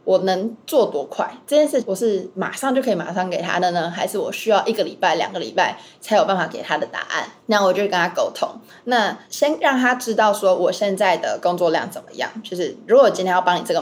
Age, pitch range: 20-39, 180-235 Hz